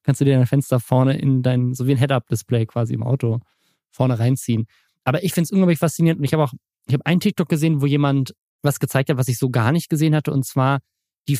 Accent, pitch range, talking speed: German, 115-145 Hz, 245 wpm